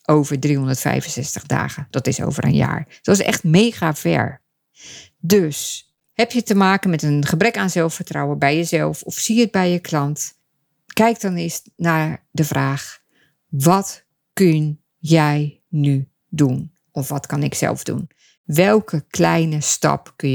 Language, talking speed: Dutch, 155 wpm